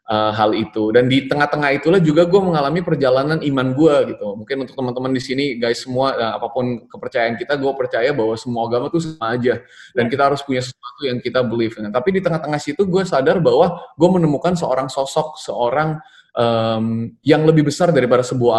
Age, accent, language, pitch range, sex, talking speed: 20-39, native, Indonesian, 120-160 Hz, male, 195 wpm